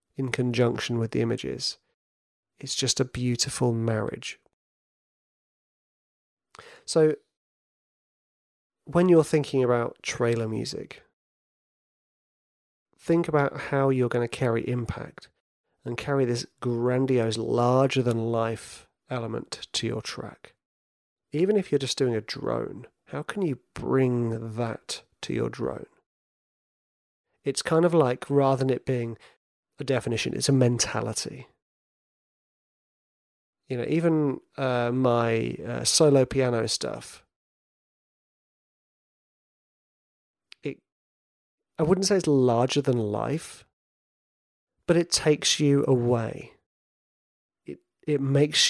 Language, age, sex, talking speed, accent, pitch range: English, 30-49, male, 105 wpm, British, 115-140 Hz